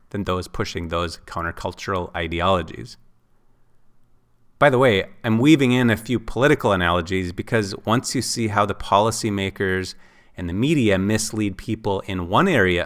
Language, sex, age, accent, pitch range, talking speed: English, male, 30-49, American, 95-115 Hz, 145 wpm